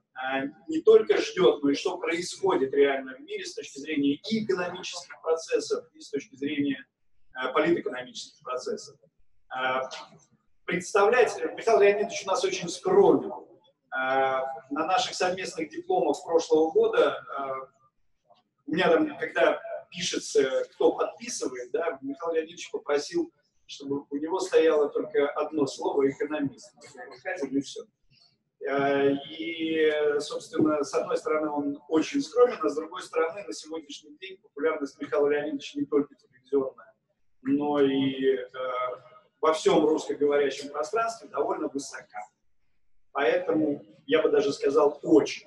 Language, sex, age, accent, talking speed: Russian, male, 30-49, native, 120 wpm